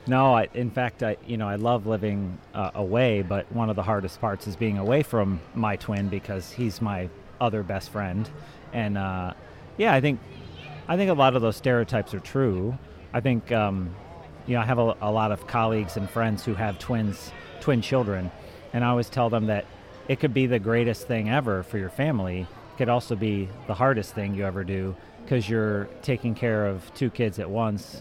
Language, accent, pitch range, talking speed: English, American, 100-120 Hz, 205 wpm